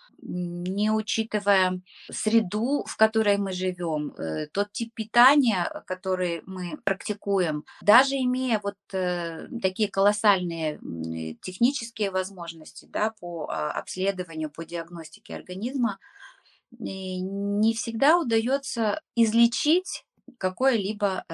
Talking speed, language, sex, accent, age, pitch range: 85 wpm, Russian, female, native, 20-39, 185-230 Hz